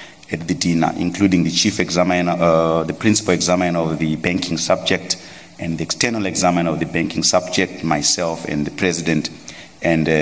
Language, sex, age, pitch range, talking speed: English, male, 30-49, 85-100 Hz, 170 wpm